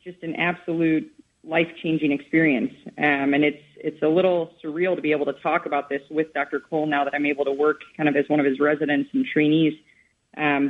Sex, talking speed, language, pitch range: female, 215 wpm, English, 150-165 Hz